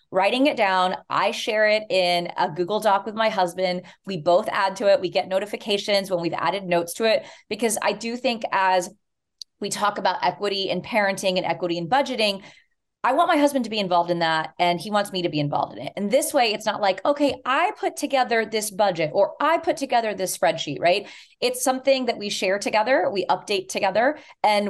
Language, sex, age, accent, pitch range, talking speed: English, female, 20-39, American, 180-235 Hz, 215 wpm